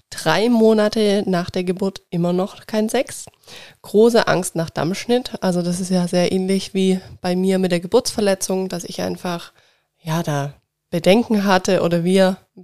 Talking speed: 165 wpm